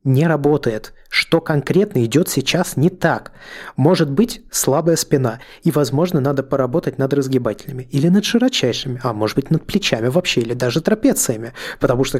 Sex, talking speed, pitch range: male, 155 wpm, 130-180 Hz